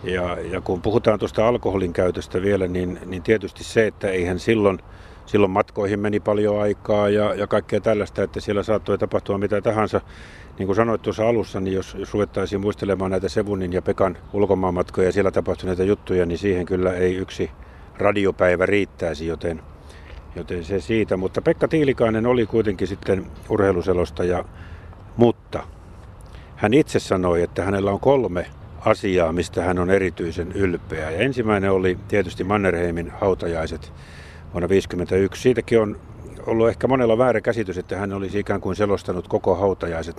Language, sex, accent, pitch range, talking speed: Finnish, male, native, 90-105 Hz, 155 wpm